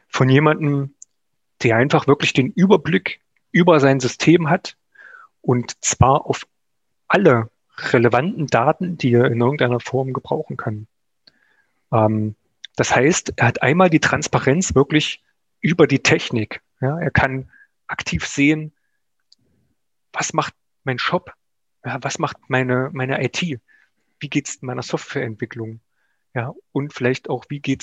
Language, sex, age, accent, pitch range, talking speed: German, male, 30-49, German, 120-155 Hz, 135 wpm